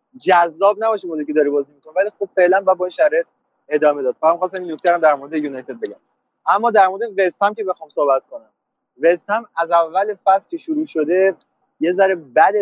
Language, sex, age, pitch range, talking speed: Persian, male, 30-49, 150-195 Hz, 205 wpm